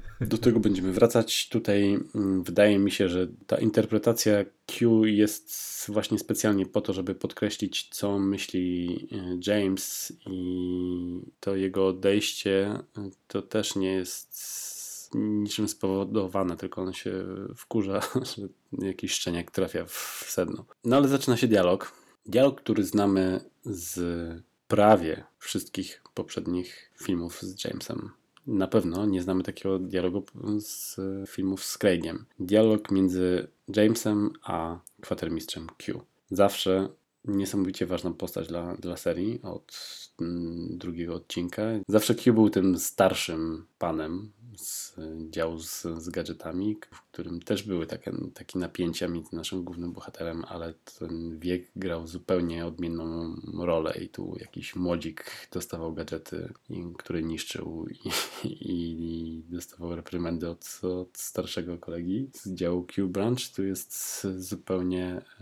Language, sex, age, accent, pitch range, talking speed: Polish, male, 20-39, native, 85-105 Hz, 125 wpm